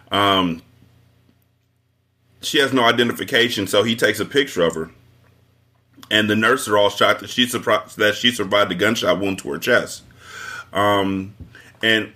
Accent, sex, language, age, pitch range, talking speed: American, male, English, 30-49, 90-115 Hz, 145 wpm